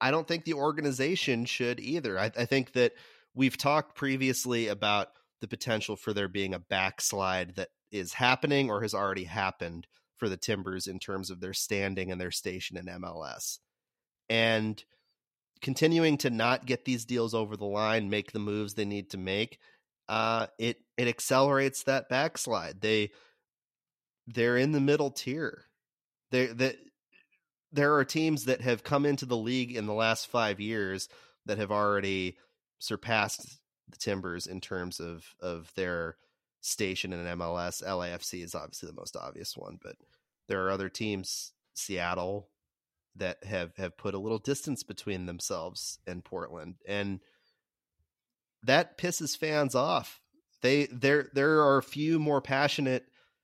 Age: 30-49